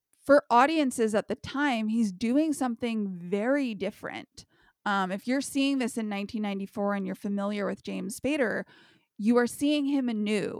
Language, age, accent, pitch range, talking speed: English, 20-39, American, 205-270 Hz, 160 wpm